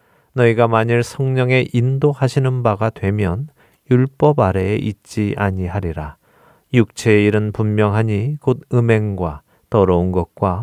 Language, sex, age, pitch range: Korean, male, 40-59, 95-125 Hz